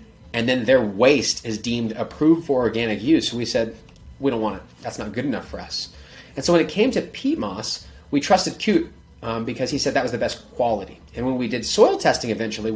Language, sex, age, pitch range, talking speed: English, male, 30-49, 110-145 Hz, 230 wpm